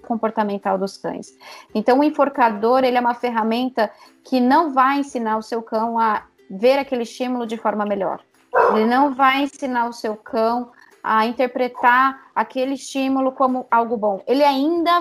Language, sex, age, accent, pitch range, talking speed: Portuguese, female, 20-39, Brazilian, 235-285 Hz, 160 wpm